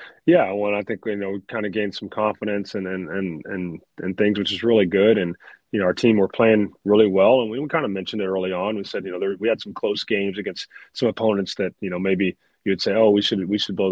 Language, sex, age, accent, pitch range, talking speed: English, male, 30-49, American, 95-110 Hz, 275 wpm